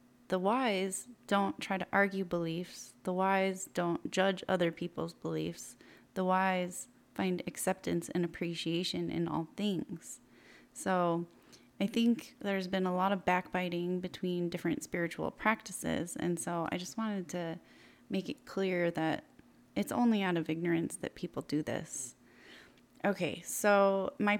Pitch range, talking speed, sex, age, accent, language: 175-210 Hz, 145 wpm, female, 20-39, American, English